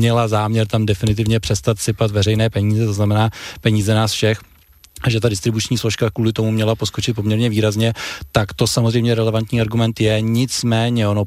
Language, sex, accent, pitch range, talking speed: Czech, male, native, 105-115 Hz, 165 wpm